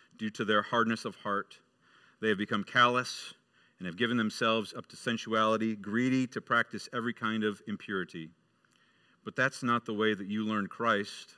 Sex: male